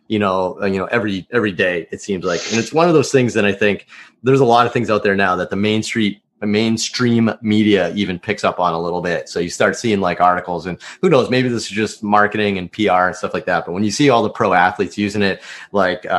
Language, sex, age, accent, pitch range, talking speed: English, male, 30-49, American, 95-110 Hz, 265 wpm